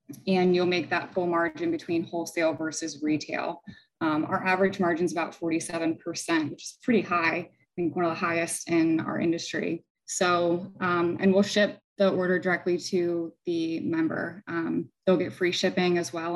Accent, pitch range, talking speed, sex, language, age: American, 170-200 Hz, 175 wpm, female, English, 20-39